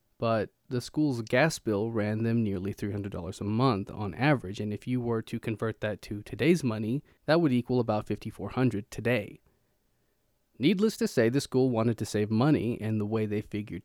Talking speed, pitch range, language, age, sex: 185 wpm, 105-130 Hz, English, 20-39, male